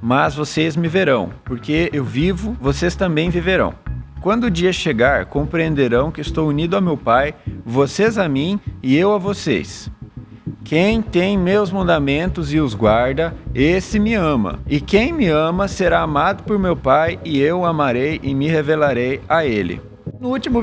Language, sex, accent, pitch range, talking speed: Portuguese, male, Brazilian, 120-190 Hz, 170 wpm